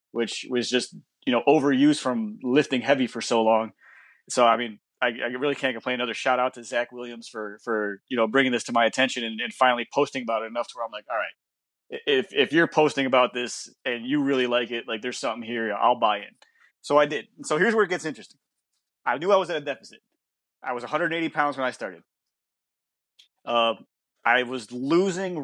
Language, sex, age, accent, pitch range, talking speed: English, male, 20-39, American, 120-145 Hz, 220 wpm